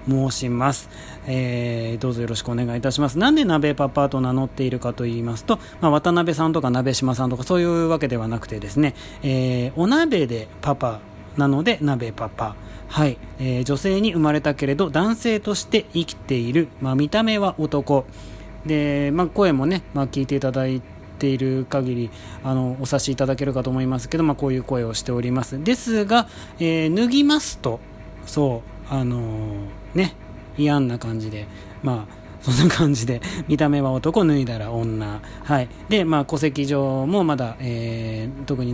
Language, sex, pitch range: Japanese, male, 120-155 Hz